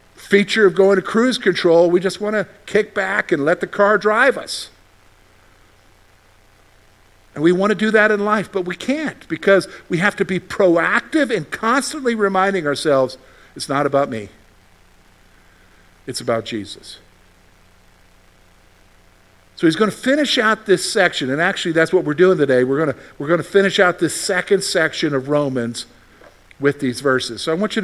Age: 50-69